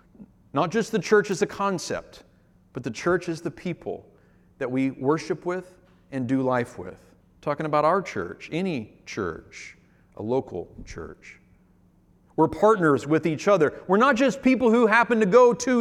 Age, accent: 40-59, American